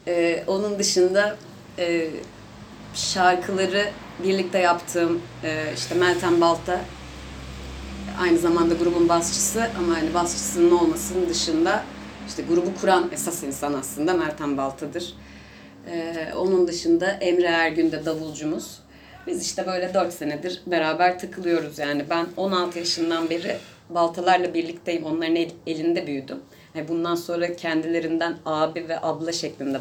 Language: Turkish